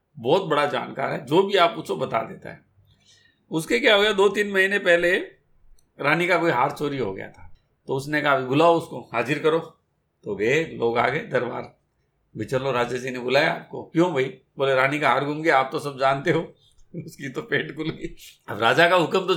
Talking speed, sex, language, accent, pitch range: 215 wpm, male, Hindi, native, 135-170 Hz